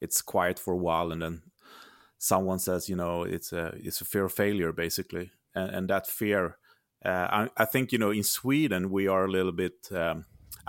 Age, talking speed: 30-49, 210 wpm